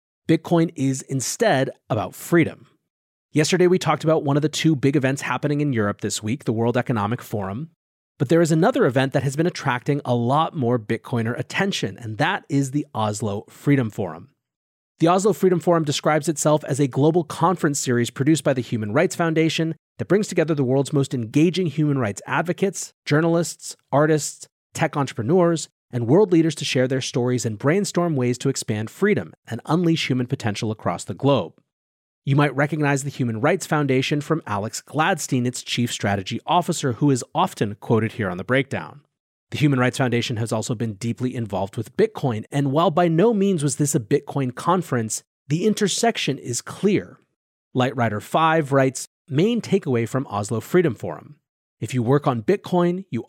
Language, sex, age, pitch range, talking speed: English, male, 30-49, 120-160 Hz, 175 wpm